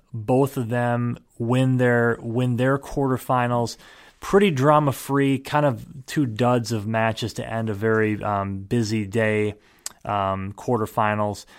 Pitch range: 105-125 Hz